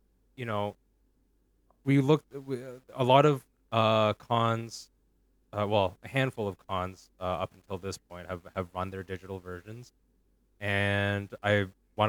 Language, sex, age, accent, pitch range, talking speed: English, male, 20-39, American, 90-110 Hz, 155 wpm